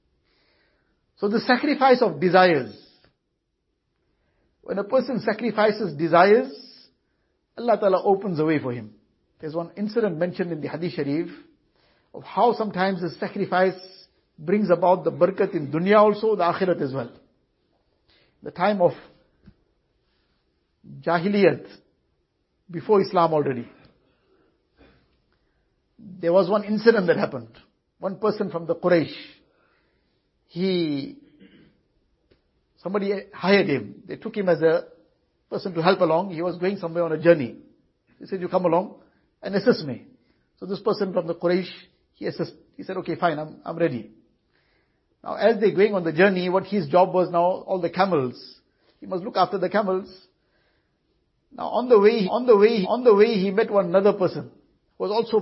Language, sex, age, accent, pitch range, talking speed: English, male, 50-69, Indian, 170-205 Hz, 155 wpm